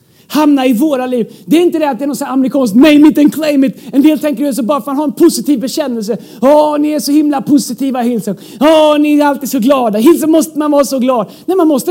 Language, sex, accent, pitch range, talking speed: Swedish, male, native, 255-325 Hz, 270 wpm